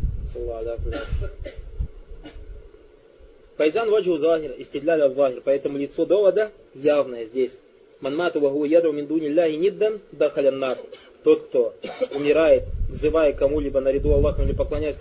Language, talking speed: Russian, 80 wpm